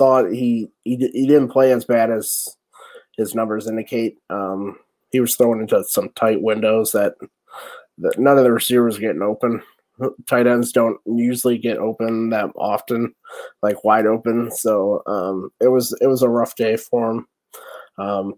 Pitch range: 105-125 Hz